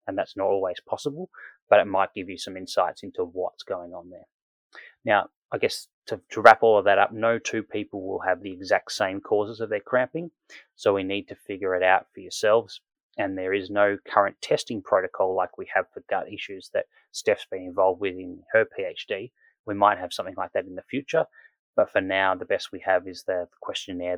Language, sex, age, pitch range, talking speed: English, male, 20-39, 95-135 Hz, 220 wpm